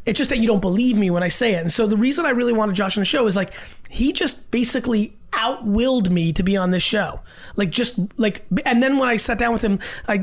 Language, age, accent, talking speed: English, 30-49, American, 270 wpm